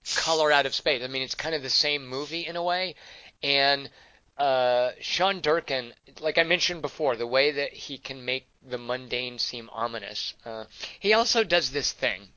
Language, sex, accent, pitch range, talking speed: English, male, American, 125-160 Hz, 190 wpm